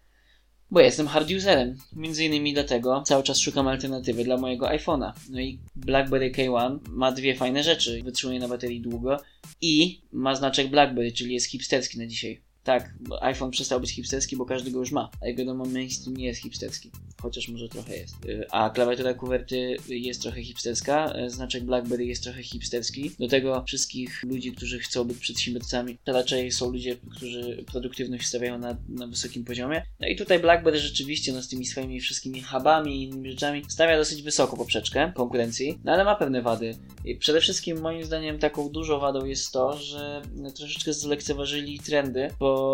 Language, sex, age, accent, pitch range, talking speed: Polish, male, 20-39, native, 125-145 Hz, 175 wpm